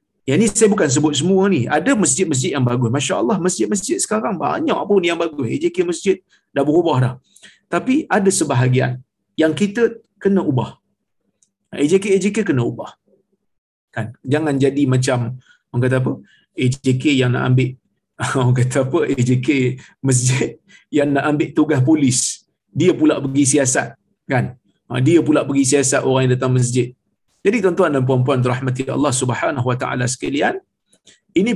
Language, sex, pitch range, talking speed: Malayalam, male, 130-190 Hz, 150 wpm